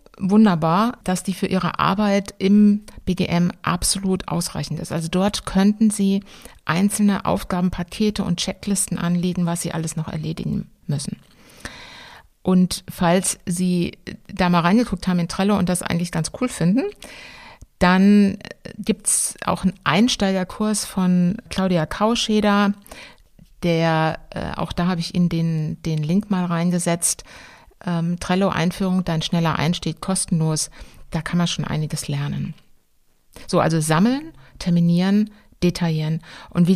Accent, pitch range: German, 170-200 Hz